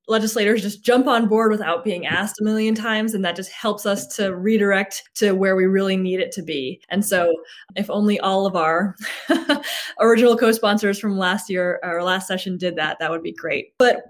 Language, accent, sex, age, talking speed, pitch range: English, American, female, 20-39, 205 wpm, 190-240 Hz